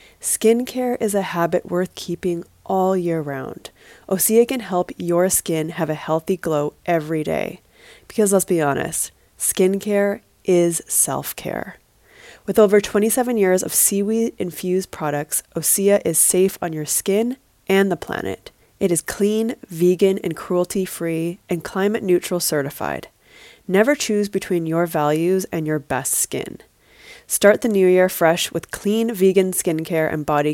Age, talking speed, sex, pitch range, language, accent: 20-39, 140 wpm, female, 165-205 Hz, English, American